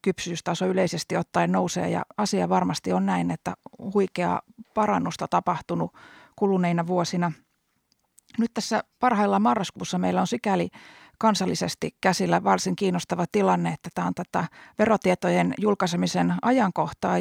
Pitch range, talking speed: 170-200 Hz, 120 wpm